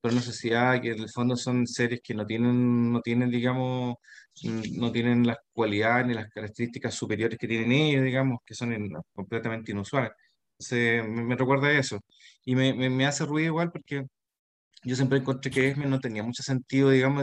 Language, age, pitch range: Spanish, 20-39, 115-135 Hz